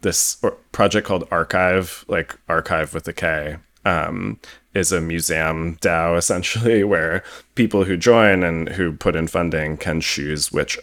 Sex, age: male, 20-39